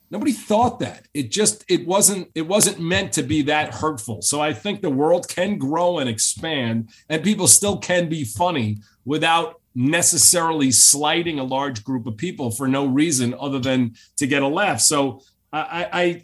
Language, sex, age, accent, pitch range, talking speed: English, male, 40-59, American, 125-175 Hz, 175 wpm